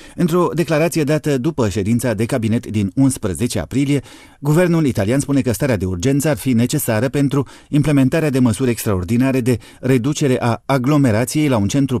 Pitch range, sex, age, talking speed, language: 115-145 Hz, male, 30-49, 160 wpm, Romanian